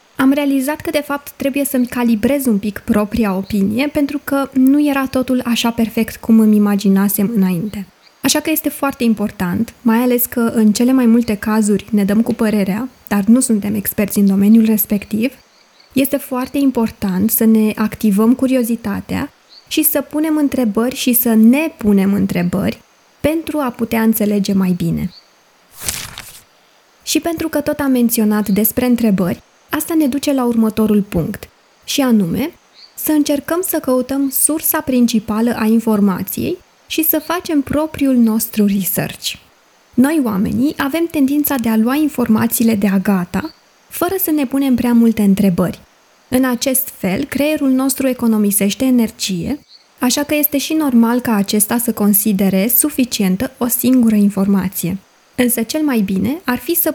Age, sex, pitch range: 20-39, female, 210-275 Hz